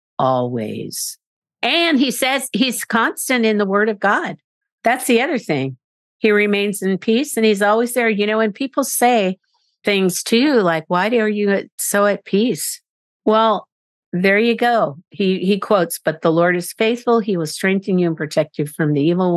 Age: 50-69